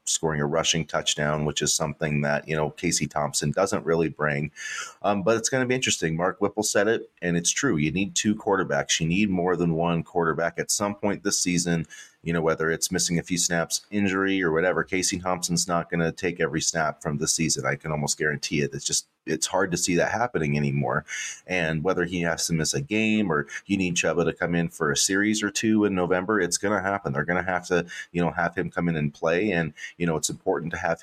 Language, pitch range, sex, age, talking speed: English, 80-95 Hz, male, 30-49, 245 wpm